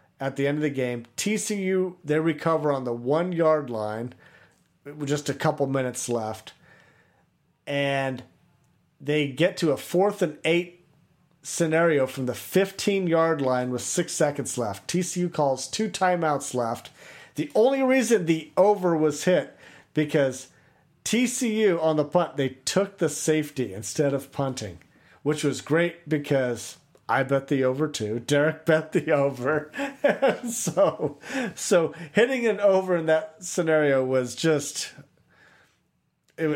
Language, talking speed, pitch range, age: English, 140 wpm, 135-170 Hz, 40-59